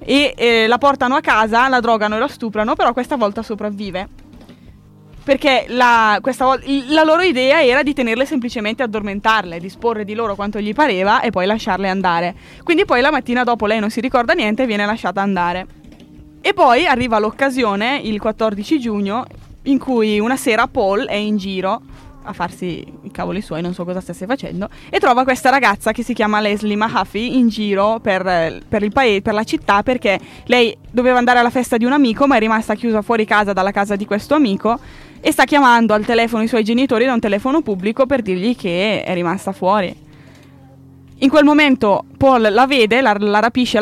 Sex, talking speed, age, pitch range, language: female, 185 wpm, 20-39, 200-255 Hz, Italian